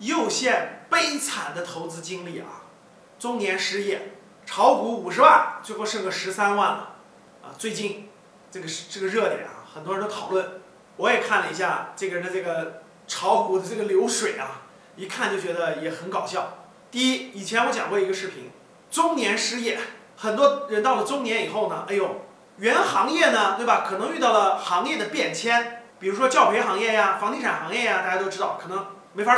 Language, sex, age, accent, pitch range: Chinese, male, 30-49, native, 190-270 Hz